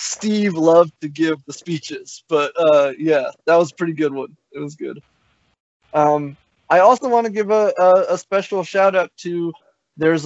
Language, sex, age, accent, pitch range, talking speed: English, male, 20-39, American, 130-160 Hz, 185 wpm